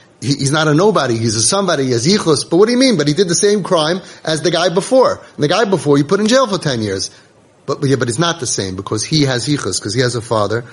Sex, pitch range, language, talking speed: male, 120-165 Hz, English, 295 wpm